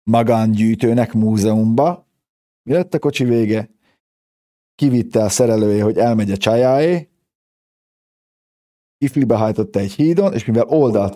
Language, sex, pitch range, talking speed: Hungarian, male, 95-115 Hz, 100 wpm